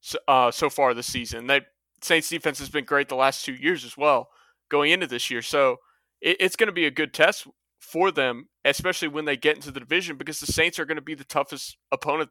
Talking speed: 240 wpm